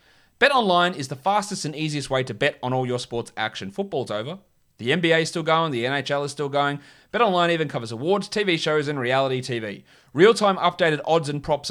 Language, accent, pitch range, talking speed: English, Australian, 125-160 Hz, 205 wpm